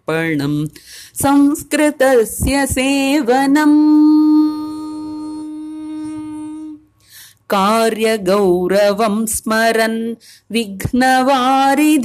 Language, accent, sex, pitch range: English, Indian, female, 225-305 Hz